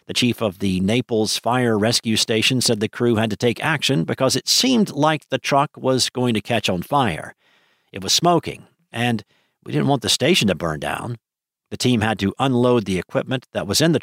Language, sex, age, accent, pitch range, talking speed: English, male, 50-69, American, 105-135 Hz, 215 wpm